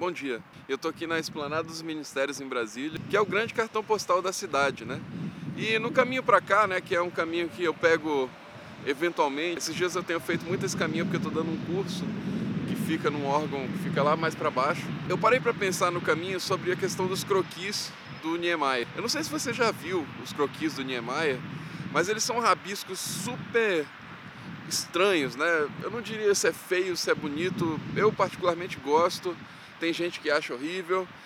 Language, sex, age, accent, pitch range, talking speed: Portuguese, male, 10-29, Brazilian, 165-215 Hz, 205 wpm